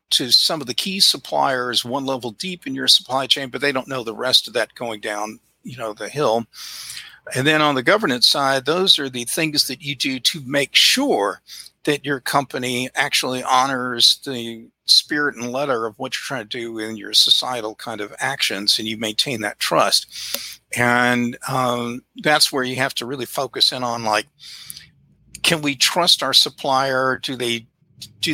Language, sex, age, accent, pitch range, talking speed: English, male, 50-69, American, 120-145 Hz, 190 wpm